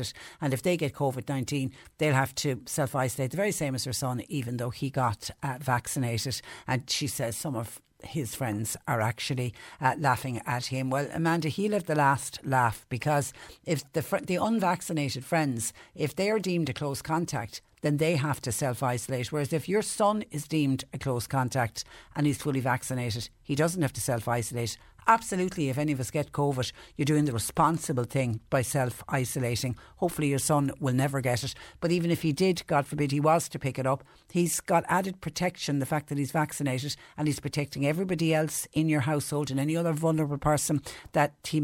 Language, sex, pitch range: English, female, 130-155 Hz